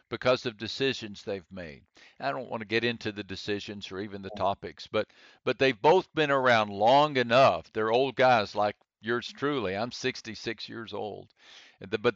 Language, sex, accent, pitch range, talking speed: English, male, American, 105-130 Hz, 180 wpm